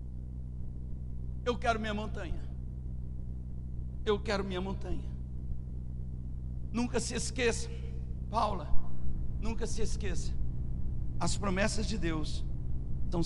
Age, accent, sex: 60-79, Brazilian, male